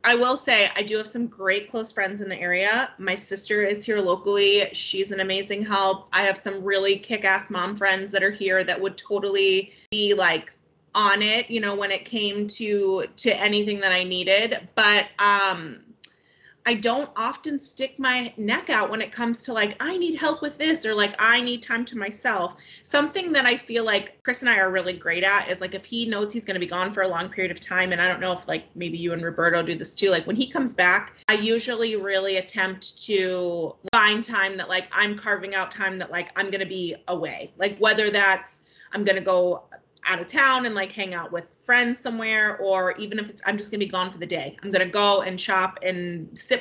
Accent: American